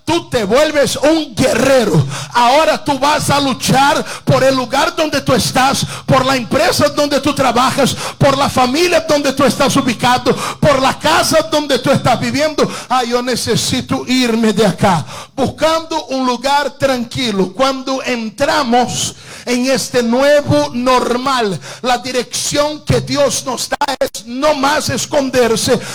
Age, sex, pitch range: 50-69, male, 245-290 Hz